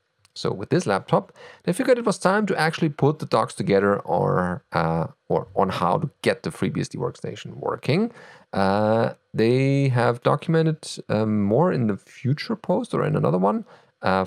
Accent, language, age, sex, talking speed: German, English, 40-59, male, 175 wpm